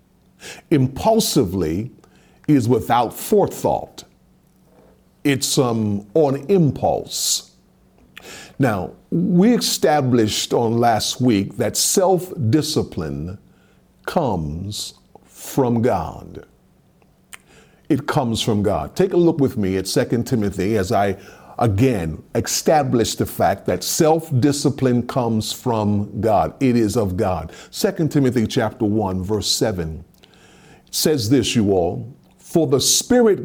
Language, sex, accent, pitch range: English, male, American, 105-150 Hz